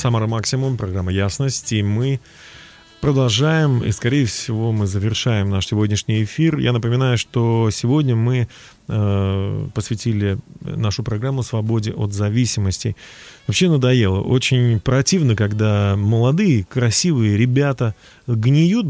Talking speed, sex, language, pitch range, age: 110 wpm, male, Russian, 110-140 Hz, 30-49